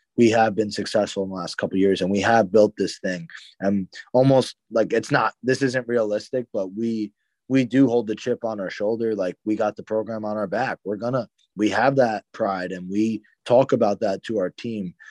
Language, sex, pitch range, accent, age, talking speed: English, male, 100-120 Hz, American, 20-39, 225 wpm